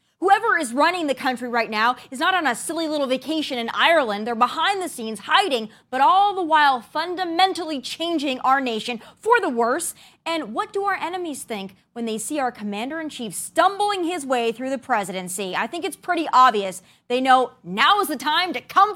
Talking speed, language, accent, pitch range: 195 wpm, English, American, 230-330 Hz